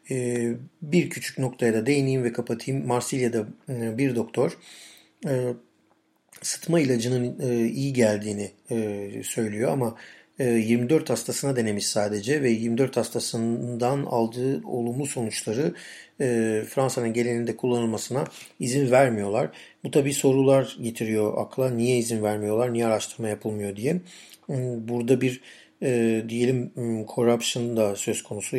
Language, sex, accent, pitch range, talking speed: Turkish, male, native, 110-130 Hz, 105 wpm